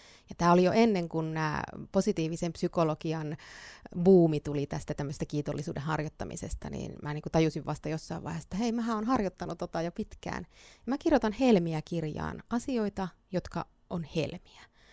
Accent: native